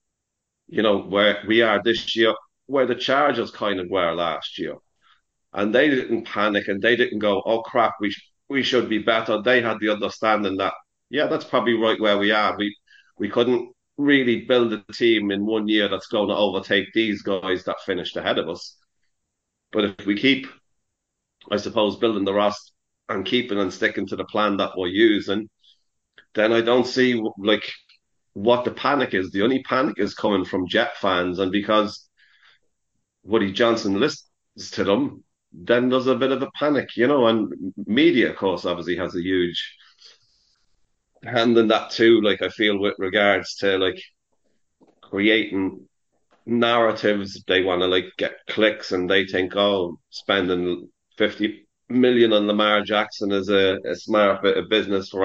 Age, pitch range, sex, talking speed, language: 40-59, 100-115 Hz, male, 175 wpm, English